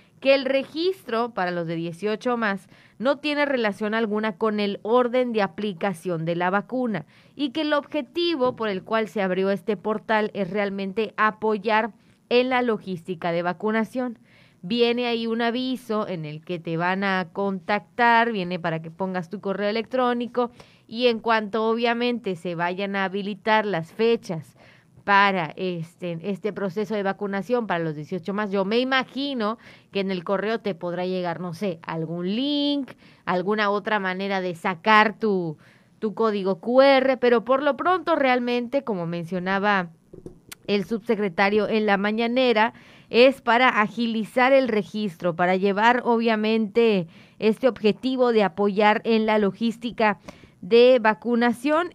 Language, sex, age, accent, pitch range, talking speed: Spanish, female, 30-49, Mexican, 190-235 Hz, 150 wpm